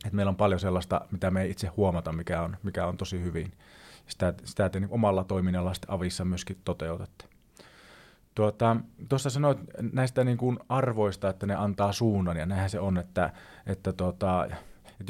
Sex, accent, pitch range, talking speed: male, native, 90-110 Hz, 170 wpm